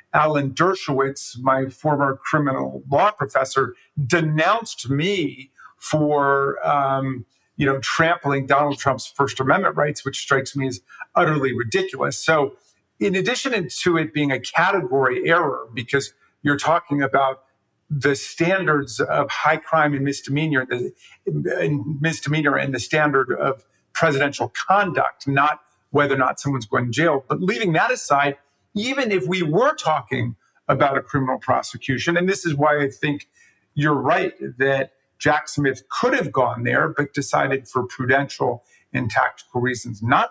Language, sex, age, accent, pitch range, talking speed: English, male, 50-69, American, 135-175 Hz, 145 wpm